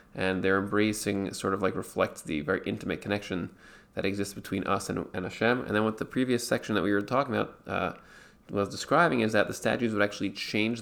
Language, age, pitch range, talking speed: English, 20-39, 95-110 Hz, 215 wpm